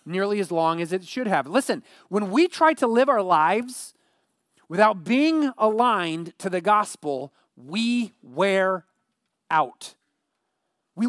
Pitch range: 175-245 Hz